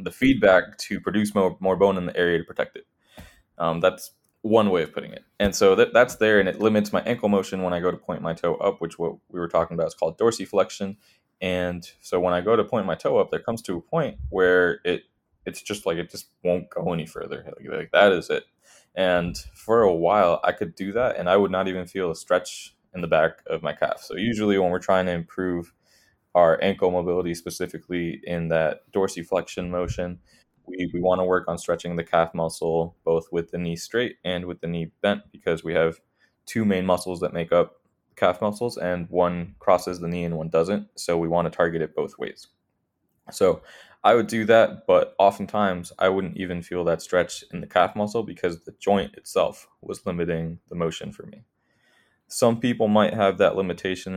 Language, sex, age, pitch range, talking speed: English, male, 20-39, 85-100 Hz, 215 wpm